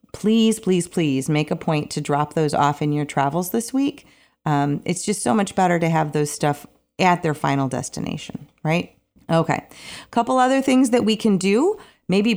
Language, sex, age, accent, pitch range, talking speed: English, female, 30-49, American, 155-210 Hz, 195 wpm